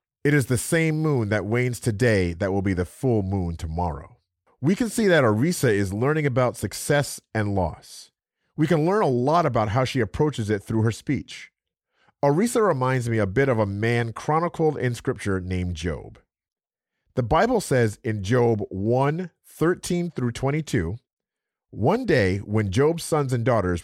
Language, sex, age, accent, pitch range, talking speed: English, male, 40-59, American, 100-145 Hz, 170 wpm